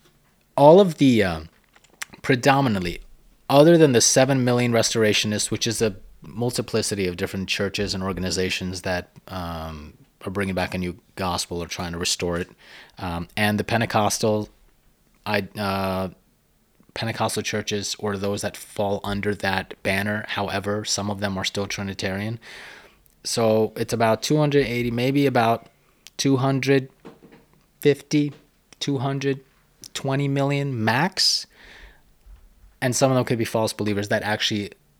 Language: English